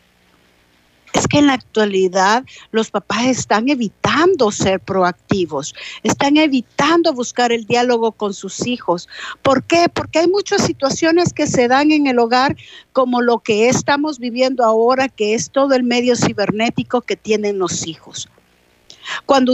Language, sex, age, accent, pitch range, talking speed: Spanish, female, 50-69, American, 200-265 Hz, 145 wpm